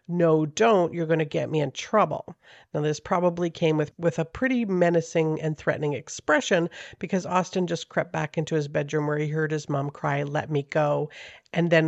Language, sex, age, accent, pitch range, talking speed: English, female, 50-69, American, 155-195 Hz, 200 wpm